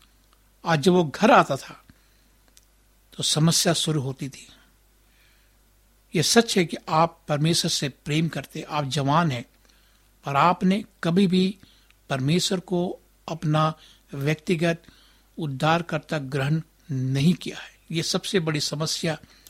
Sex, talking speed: male, 125 wpm